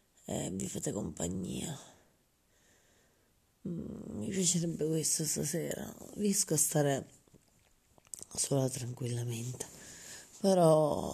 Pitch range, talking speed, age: 135-170 Hz, 75 wpm, 30-49